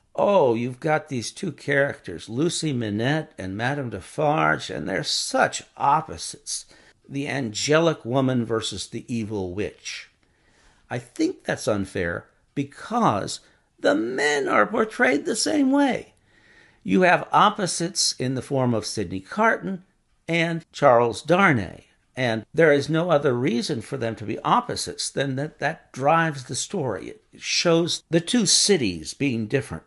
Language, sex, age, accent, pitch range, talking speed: English, male, 60-79, American, 105-160 Hz, 140 wpm